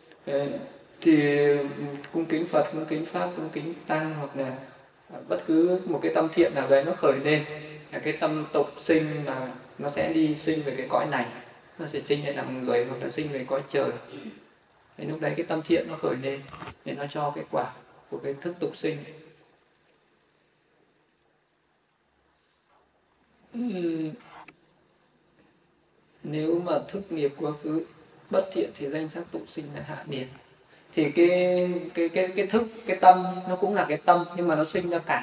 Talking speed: 175 wpm